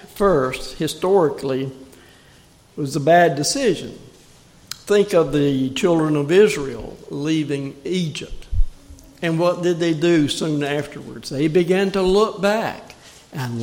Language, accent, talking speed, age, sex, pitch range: English, American, 125 wpm, 60-79, male, 130-160 Hz